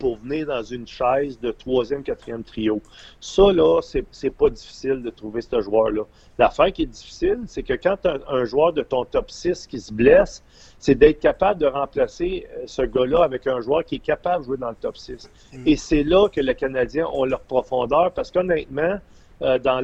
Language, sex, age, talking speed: French, male, 40-59, 200 wpm